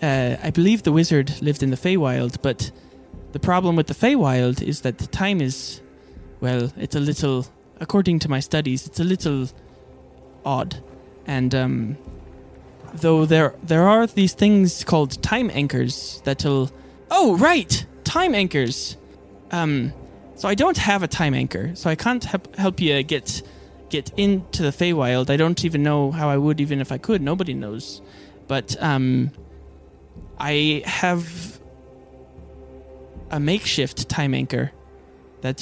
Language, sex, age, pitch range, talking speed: English, male, 20-39, 105-165 Hz, 150 wpm